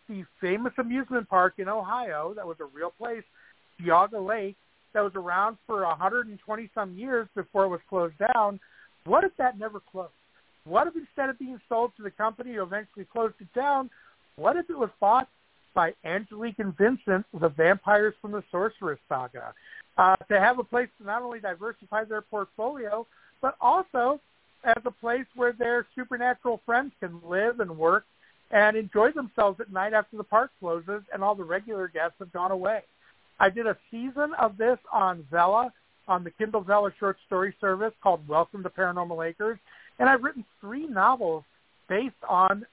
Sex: male